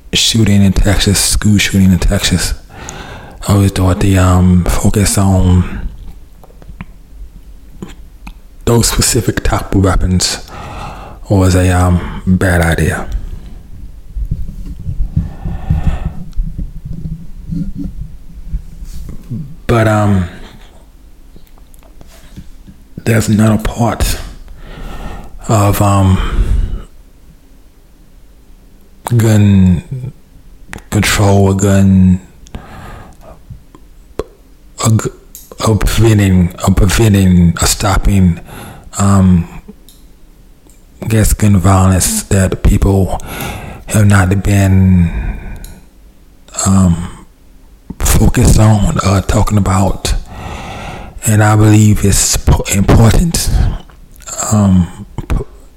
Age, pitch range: 40-59, 85-105 Hz